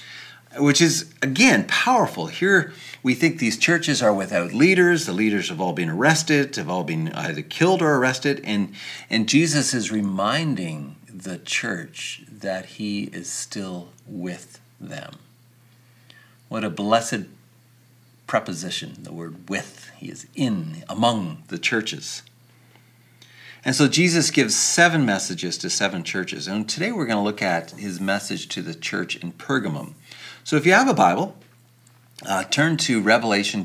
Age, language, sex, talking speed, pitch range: 50-69, English, male, 150 wpm, 100-145 Hz